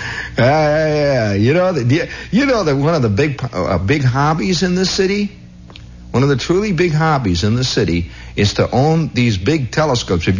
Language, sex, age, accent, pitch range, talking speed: English, male, 60-79, American, 90-145 Hz, 210 wpm